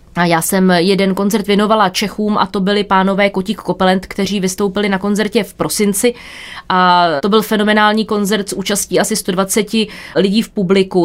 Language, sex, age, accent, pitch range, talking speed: Czech, female, 20-39, native, 190-225 Hz, 165 wpm